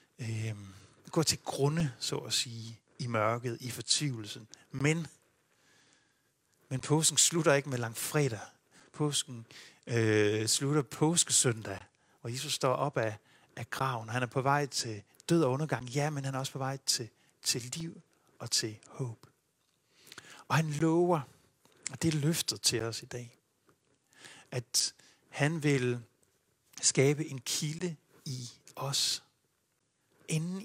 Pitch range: 120-150 Hz